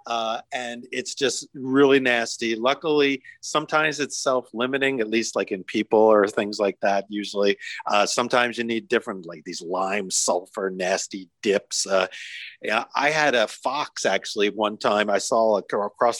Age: 40-59